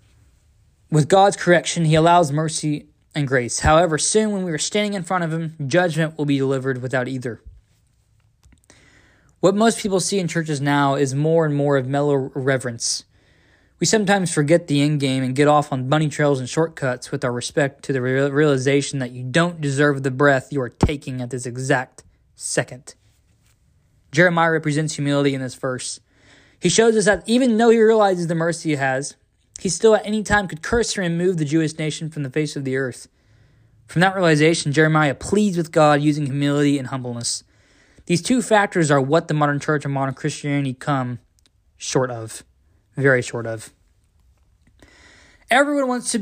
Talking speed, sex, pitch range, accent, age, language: 180 wpm, male, 130-170 Hz, American, 20-39, English